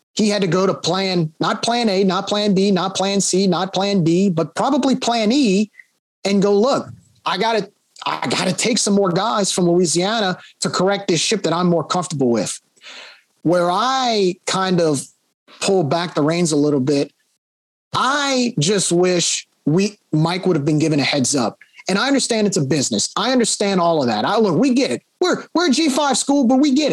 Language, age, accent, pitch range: English, 30-49, American, 175-230 Hz